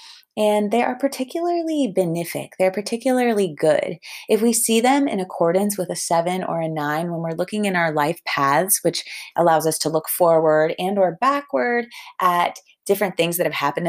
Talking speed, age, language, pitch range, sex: 180 wpm, 20-39, English, 150-190 Hz, female